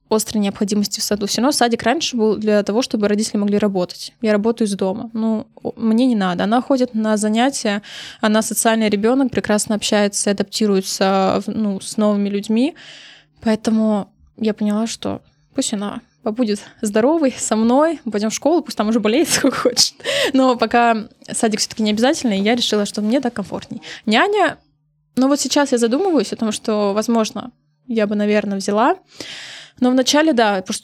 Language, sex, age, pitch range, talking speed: Russian, female, 20-39, 205-235 Hz, 165 wpm